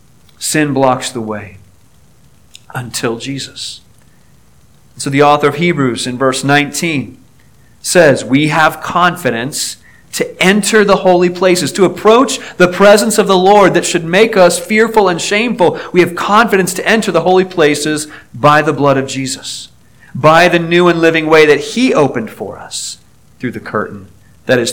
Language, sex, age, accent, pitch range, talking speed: English, male, 40-59, American, 125-175 Hz, 160 wpm